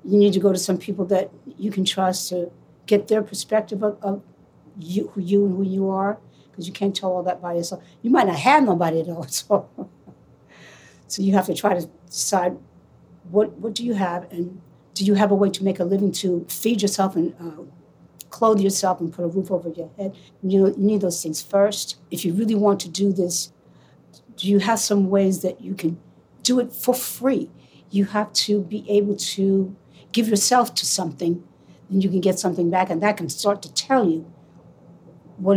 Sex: female